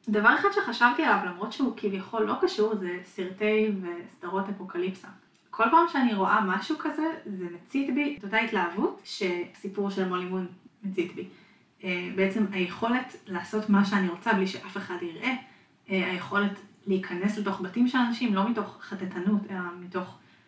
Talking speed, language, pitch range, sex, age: 145 wpm, Hebrew, 185-225 Hz, female, 20-39